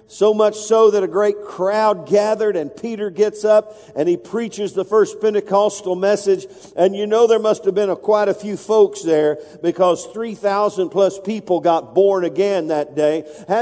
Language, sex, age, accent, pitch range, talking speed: English, male, 50-69, American, 195-230 Hz, 180 wpm